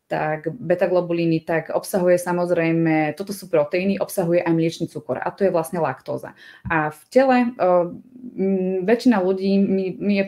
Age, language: 20-39, Czech